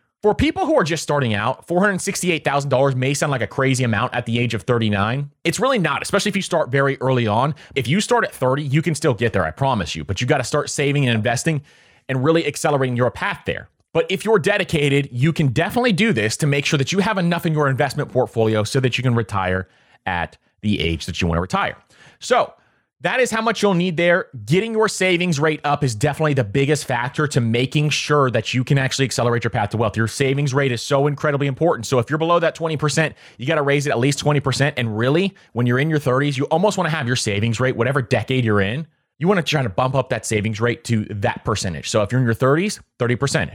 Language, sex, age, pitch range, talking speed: English, male, 30-49, 120-160 Hz, 245 wpm